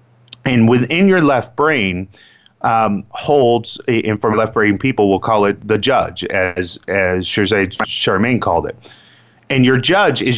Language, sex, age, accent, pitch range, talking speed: English, male, 30-49, American, 95-120 Hz, 145 wpm